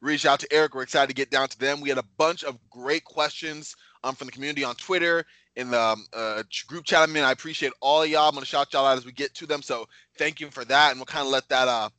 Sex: male